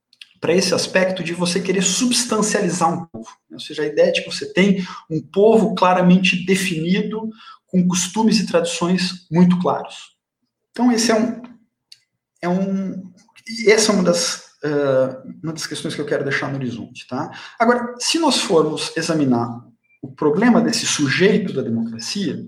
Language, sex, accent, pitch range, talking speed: Portuguese, male, Brazilian, 160-220 Hz, 155 wpm